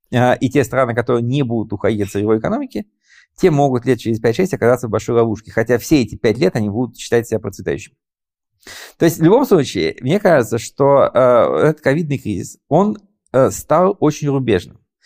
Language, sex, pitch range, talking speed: Ukrainian, male, 110-145 Hz, 175 wpm